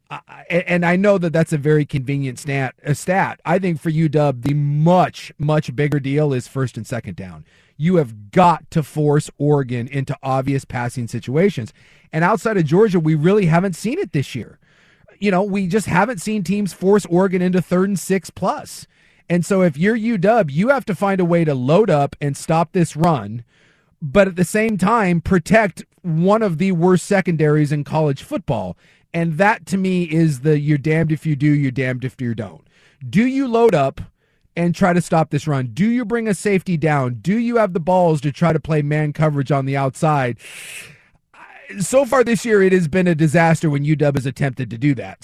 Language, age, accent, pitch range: English, 40-59, American, 145-185 Hz